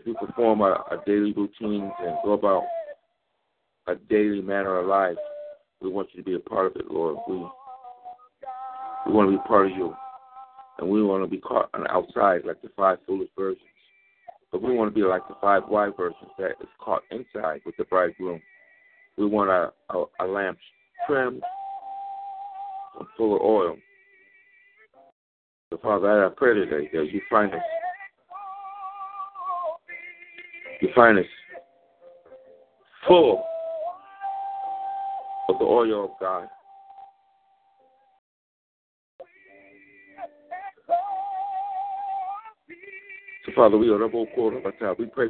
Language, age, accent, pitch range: English, 60-79, American, 265-390 Hz